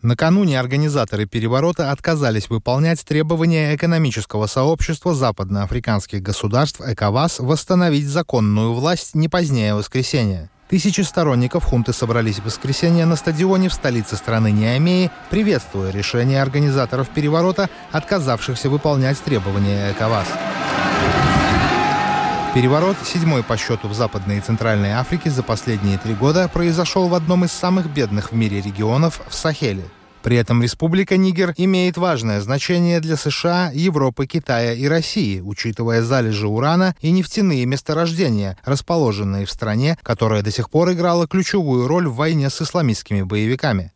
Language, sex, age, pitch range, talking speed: Russian, male, 20-39, 115-170 Hz, 130 wpm